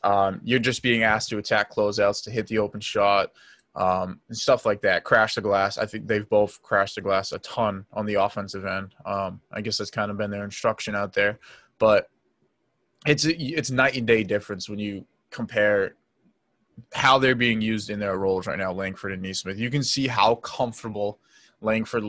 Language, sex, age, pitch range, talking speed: English, male, 20-39, 100-115 Hz, 200 wpm